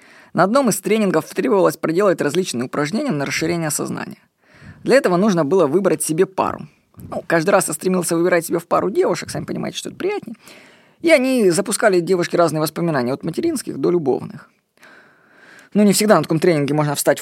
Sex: female